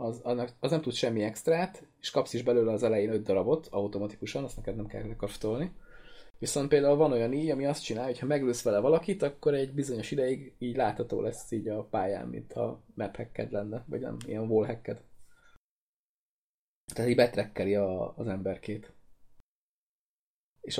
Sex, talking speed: male, 165 wpm